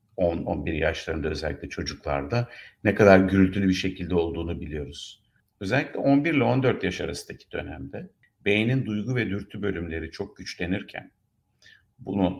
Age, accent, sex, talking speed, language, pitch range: 60-79, native, male, 125 wpm, Turkish, 85-105 Hz